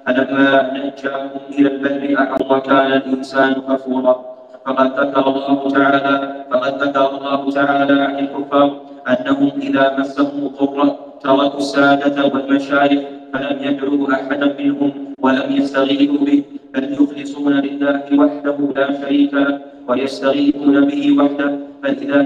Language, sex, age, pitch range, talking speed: Arabic, male, 30-49, 140-145 Hz, 115 wpm